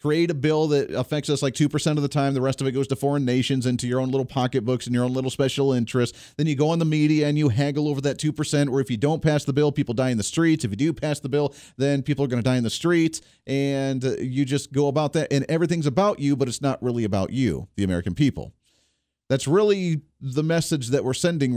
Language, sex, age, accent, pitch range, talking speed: English, male, 40-59, American, 130-155 Hz, 265 wpm